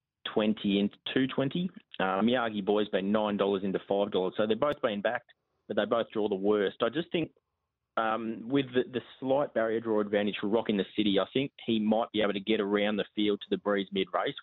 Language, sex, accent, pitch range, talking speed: English, male, Australian, 100-115 Hz, 215 wpm